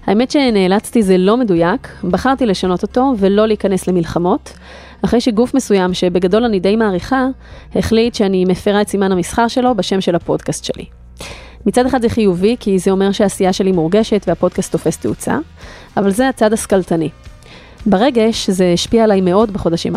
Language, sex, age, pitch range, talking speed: Hebrew, female, 30-49, 180-225 Hz, 155 wpm